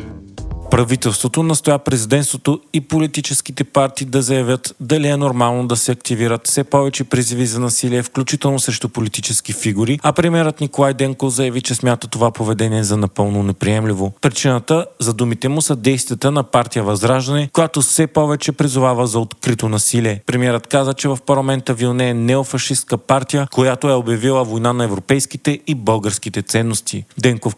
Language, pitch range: Bulgarian, 115-135 Hz